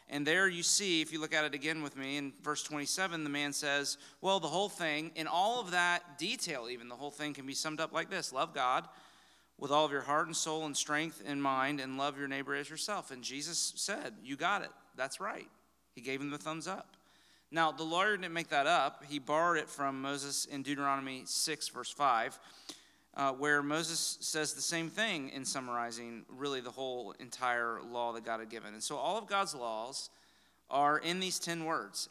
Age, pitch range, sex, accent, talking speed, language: 40-59, 130-160 Hz, male, American, 215 wpm, English